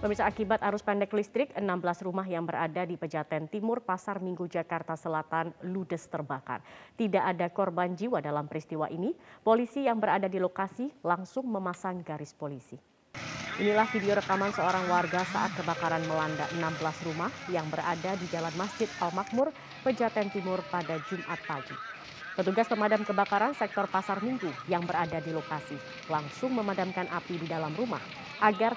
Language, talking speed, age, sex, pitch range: Indonesian, 150 wpm, 30-49, female, 165-215 Hz